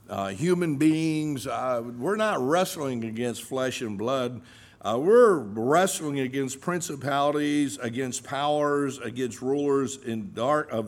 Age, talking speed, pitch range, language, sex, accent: 60-79, 125 wpm, 125-160 Hz, English, male, American